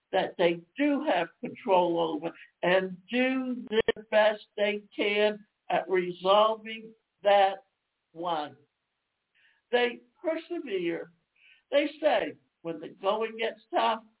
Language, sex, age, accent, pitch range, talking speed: English, male, 60-79, American, 210-275 Hz, 105 wpm